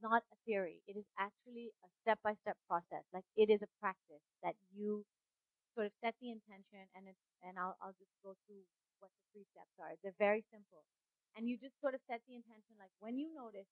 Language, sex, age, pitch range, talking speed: English, female, 30-49, 185-225 Hz, 215 wpm